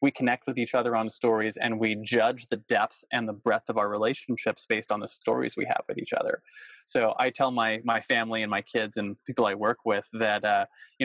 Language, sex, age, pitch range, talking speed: English, male, 20-39, 110-130 Hz, 240 wpm